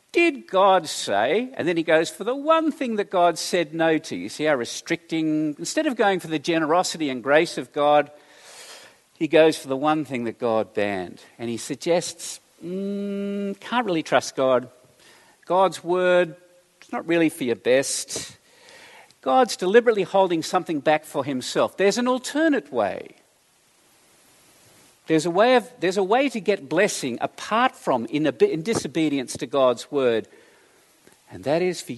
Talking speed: 165 wpm